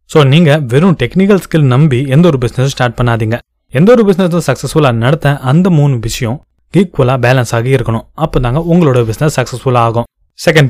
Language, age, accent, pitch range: Tamil, 20-39, native, 120-155 Hz